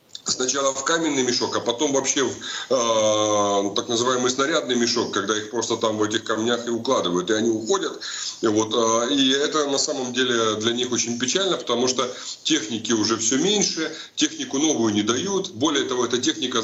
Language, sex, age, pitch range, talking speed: Russian, male, 30-49, 110-135 Hz, 175 wpm